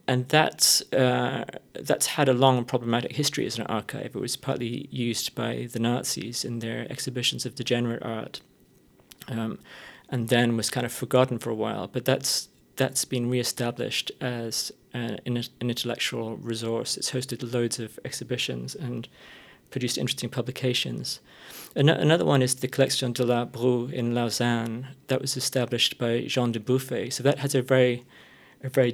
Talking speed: 170 wpm